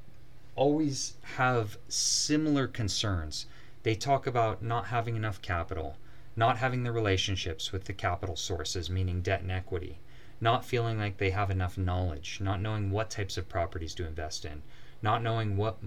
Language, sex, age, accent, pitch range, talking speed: English, male, 30-49, American, 90-120 Hz, 160 wpm